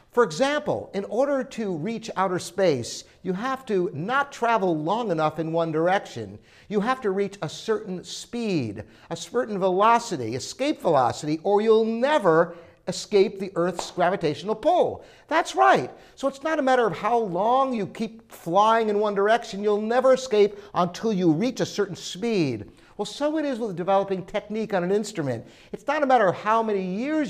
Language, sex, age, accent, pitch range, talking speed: English, male, 50-69, American, 170-235 Hz, 180 wpm